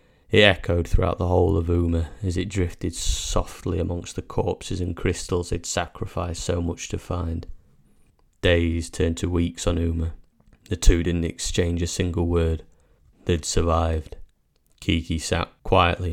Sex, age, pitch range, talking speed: male, 30-49, 80-90 Hz, 155 wpm